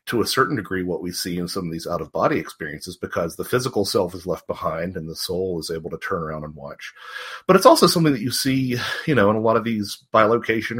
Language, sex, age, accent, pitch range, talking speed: English, male, 40-59, American, 90-115 Hz, 260 wpm